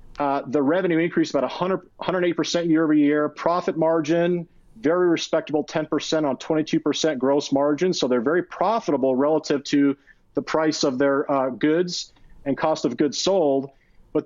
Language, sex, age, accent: English, male, 40-59, American